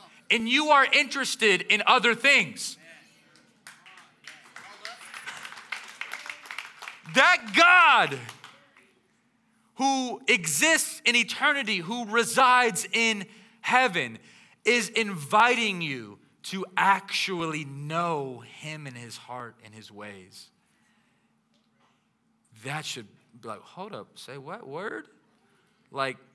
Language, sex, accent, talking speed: English, male, American, 90 wpm